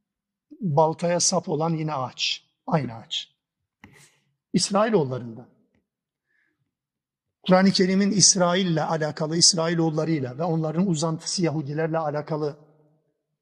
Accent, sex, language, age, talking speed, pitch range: native, male, Turkish, 50-69, 85 wpm, 160-195 Hz